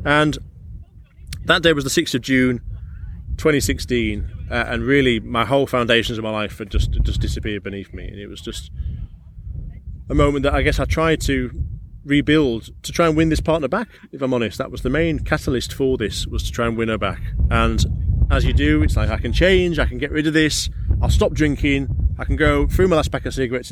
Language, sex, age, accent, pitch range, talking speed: English, male, 20-39, British, 95-135 Hz, 225 wpm